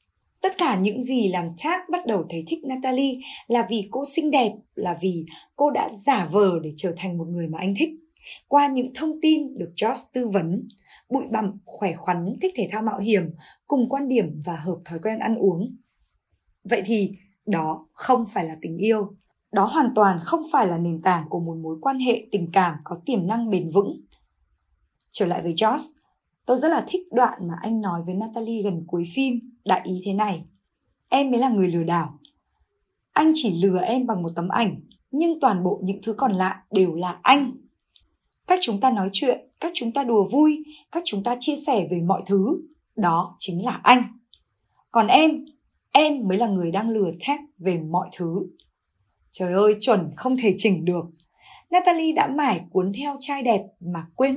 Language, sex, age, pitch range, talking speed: Vietnamese, female, 20-39, 180-265 Hz, 200 wpm